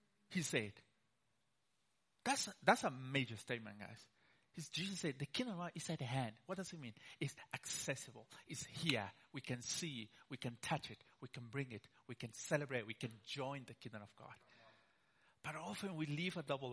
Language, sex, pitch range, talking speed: English, male, 120-160 Hz, 195 wpm